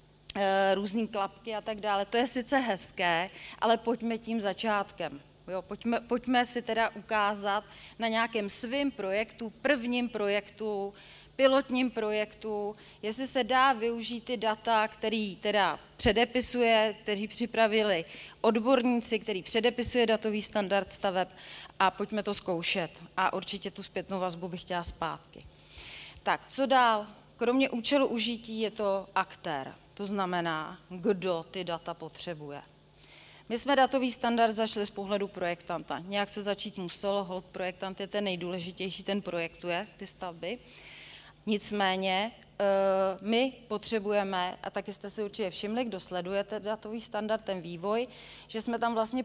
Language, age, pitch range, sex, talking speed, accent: Czech, 30-49, 190-225 Hz, female, 135 wpm, native